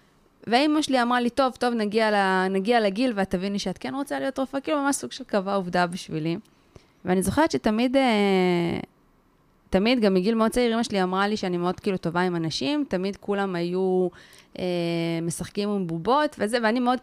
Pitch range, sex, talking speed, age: 175-225 Hz, female, 180 wpm, 20-39